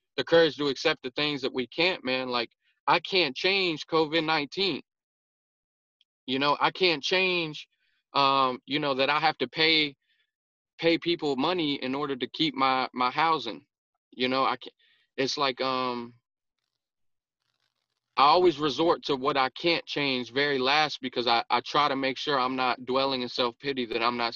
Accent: American